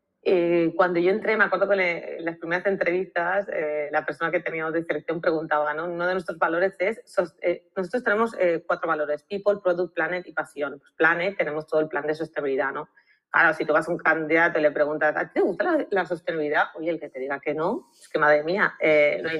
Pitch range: 155-195 Hz